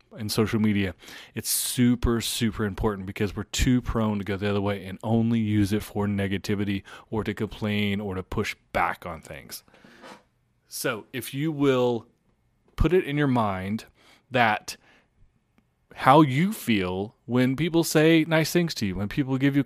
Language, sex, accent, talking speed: English, male, American, 170 wpm